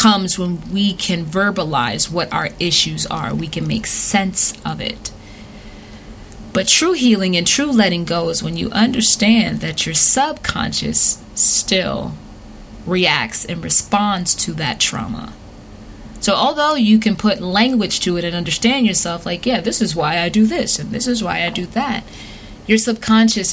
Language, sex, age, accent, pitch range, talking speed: English, female, 20-39, American, 165-210 Hz, 165 wpm